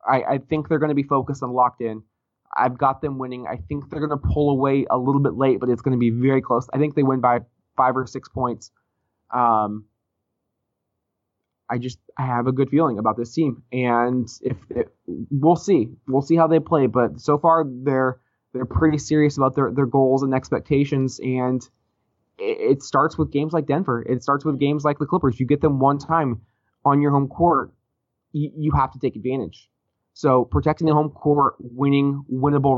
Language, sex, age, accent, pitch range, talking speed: English, male, 20-39, American, 120-145 Hz, 205 wpm